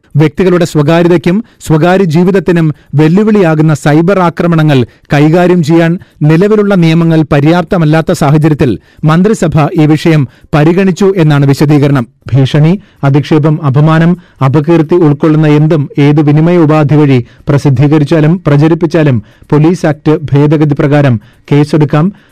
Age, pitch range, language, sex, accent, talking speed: 30-49, 145-165 Hz, Malayalam, male, native, 90 wpm